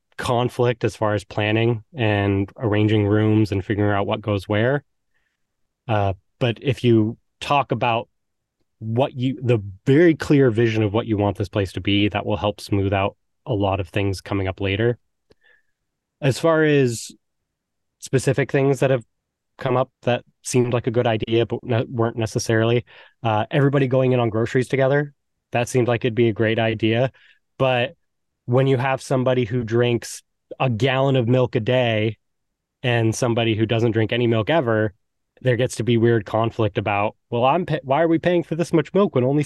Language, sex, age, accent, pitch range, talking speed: English, male, 20-39, American, 105-130 Hz, 180 wpm